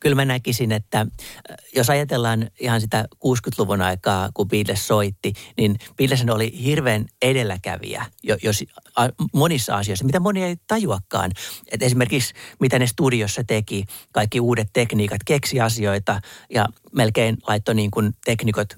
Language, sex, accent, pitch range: Finnish, male, native, 105-140 Hz